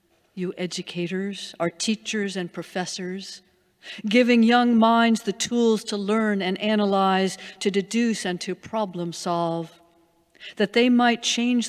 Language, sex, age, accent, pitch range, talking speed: English, female, 50-69, American, 175-230 Hz, 130 wpm